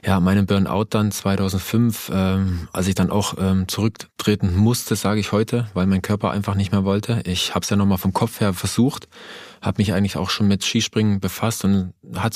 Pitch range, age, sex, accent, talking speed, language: 95-105 Hz, 20-39, male, German, 205 wpm, German